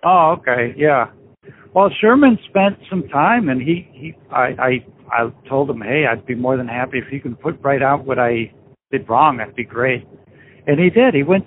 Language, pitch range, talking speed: English, 125-160 Hz, 210 wpm